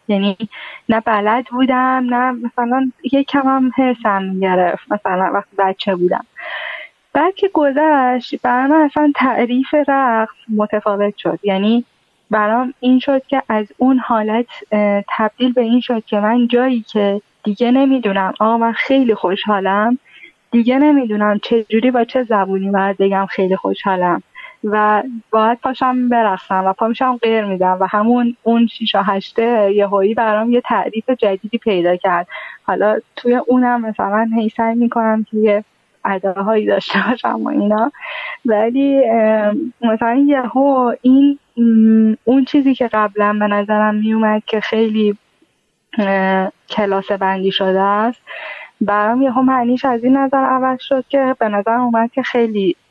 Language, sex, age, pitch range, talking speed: Persian, female, 10-29, 205-255 Hz, 130 wpm